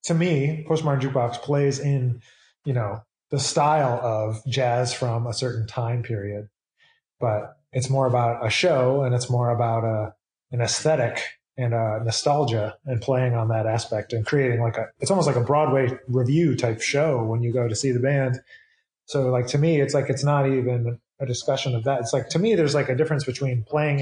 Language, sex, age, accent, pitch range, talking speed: English, male, 20-39, American, 115-140 Hz, 200 wpm